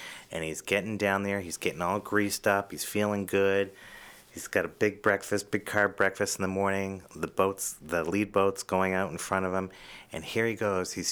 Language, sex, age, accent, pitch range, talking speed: English, male, 30-49, American, 85-100 Hz, 215 wpm